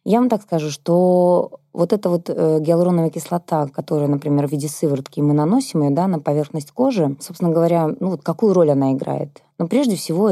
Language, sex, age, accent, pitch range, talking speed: Russian, female, 20-39, native, 150-175 Hz, 200 wpm